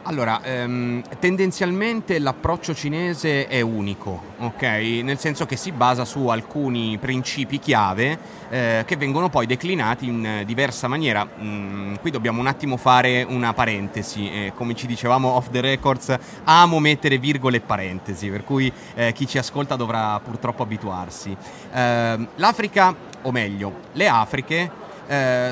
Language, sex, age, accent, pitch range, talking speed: Italian, male, 30-49, native, 120-150 Hz, 145 wpm